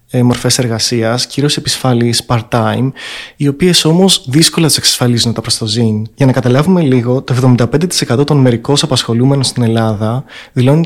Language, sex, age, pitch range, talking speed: Greek, male, 20-39, 120-155 Hz, 150 wpm